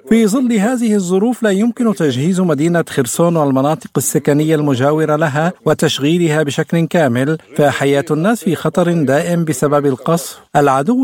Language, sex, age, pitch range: Arabic, male, 50-69, 150-175 Hz